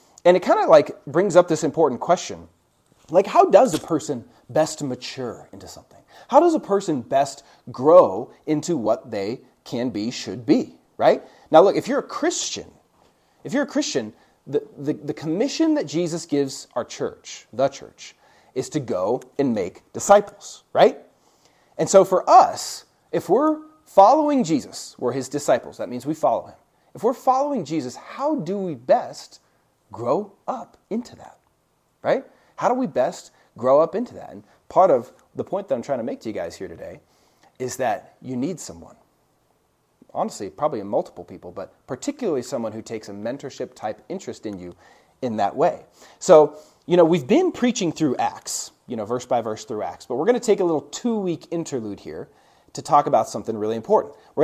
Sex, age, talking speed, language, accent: male, 30-49, 185 wpm, English, American